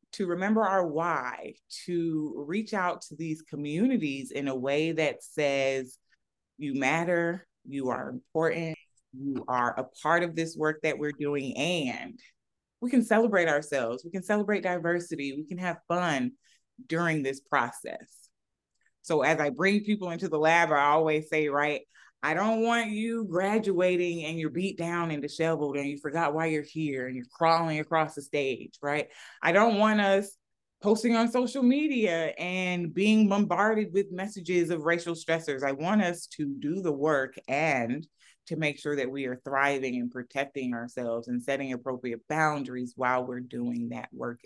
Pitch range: 140-180 Hz